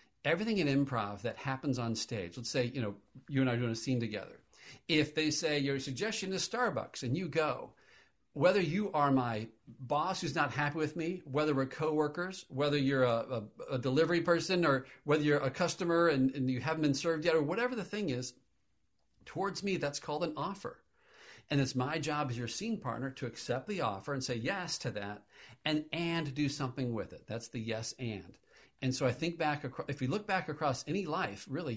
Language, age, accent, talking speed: English, 50-69, American, 210 wpm